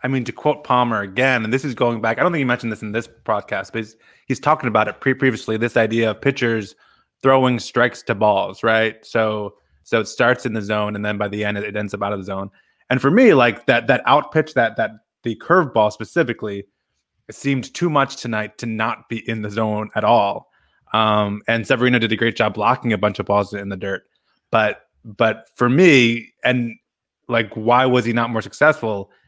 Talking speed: 225 wpm